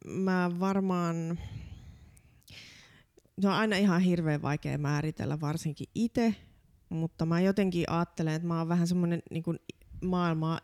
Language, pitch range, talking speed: Finnish, 150-175 Hz, 125 wpm